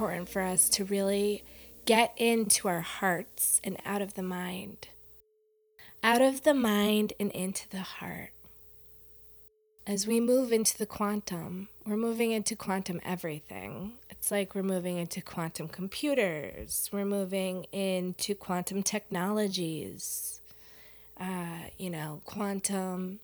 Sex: female